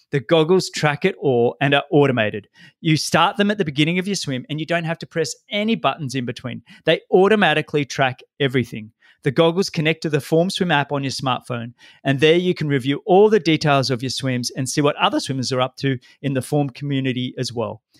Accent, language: Australian, English